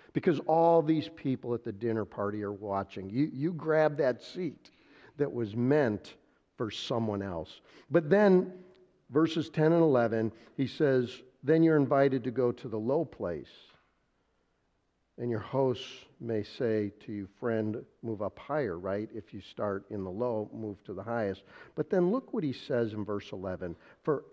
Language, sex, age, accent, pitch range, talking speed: English, male, 50-69, American, 110-160 Hz, 175 wpm